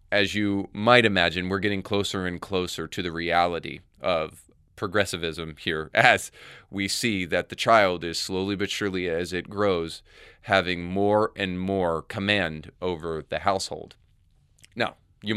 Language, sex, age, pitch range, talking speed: English, male, 20-39, 90-110 Hz, 150 wpm